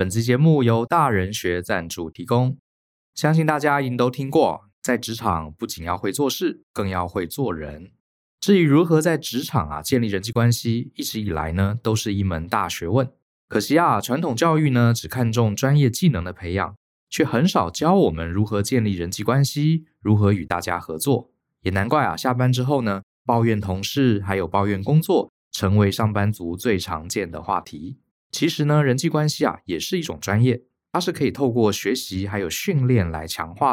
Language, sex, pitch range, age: Chinese, male, 100-140 Hz, 20-39